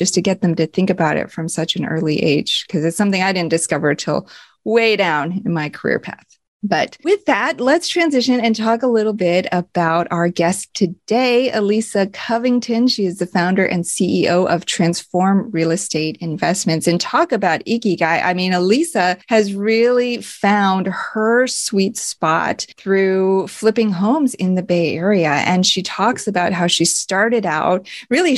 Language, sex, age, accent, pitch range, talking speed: English, female, 30-49, American, 175-215 Hz, 175 wpm